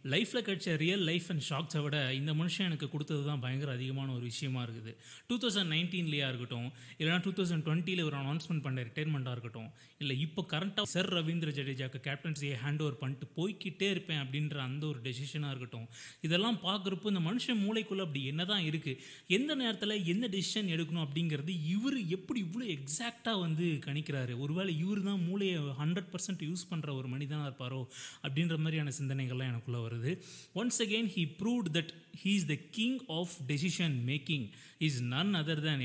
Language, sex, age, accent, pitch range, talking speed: Tamil, male, 30-49, native, 135-185 Hz, 155 wpm